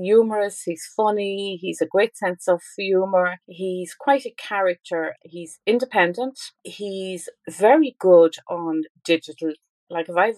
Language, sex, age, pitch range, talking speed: English, female, 40-59, 165-210 Hz, 140 wpm